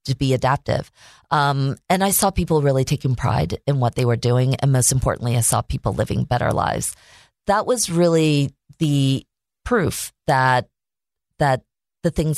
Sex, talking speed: female, 165 wpm